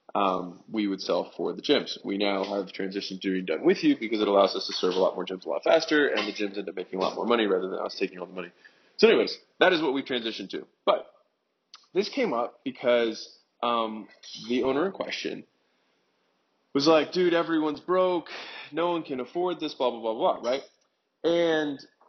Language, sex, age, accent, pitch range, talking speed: English, male, 20-39, American, 100-155 Hz, 220 wpm